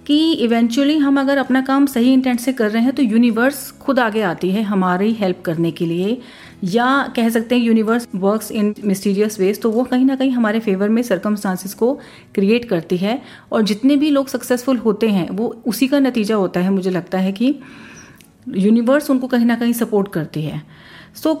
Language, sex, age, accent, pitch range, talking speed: Hindi, female, 30-49, native, 200-250 Hz, 200 wpm